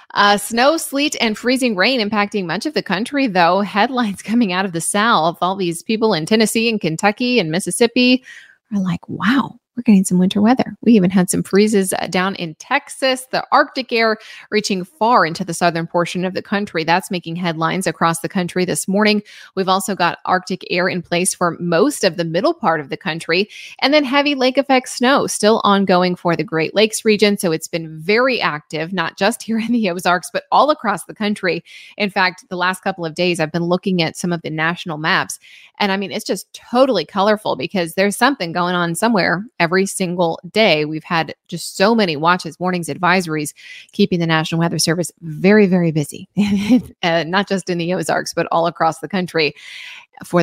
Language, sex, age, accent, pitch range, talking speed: English, female, 20-39, American, 170-220 Hz, 200 wpm